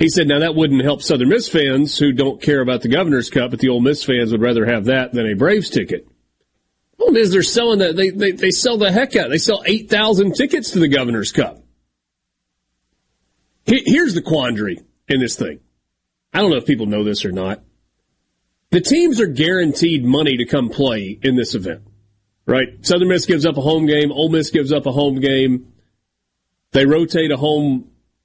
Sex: male